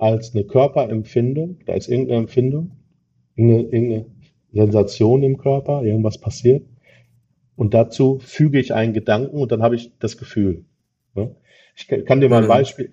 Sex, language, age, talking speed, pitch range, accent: male, German, 40-59, 150 wpm, 105-135 Hz, German